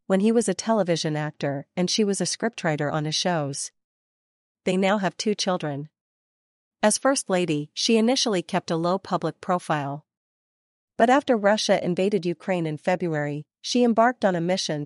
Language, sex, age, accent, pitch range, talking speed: English, female, 40-59, American, 155-205 Hz, 165 wpm